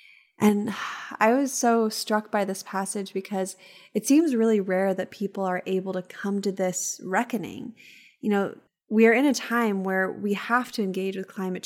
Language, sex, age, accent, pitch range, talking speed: English, female, 20-39, American, 190-215 Hz, 185 wpm